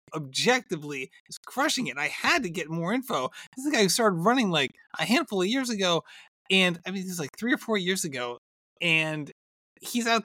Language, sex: English, male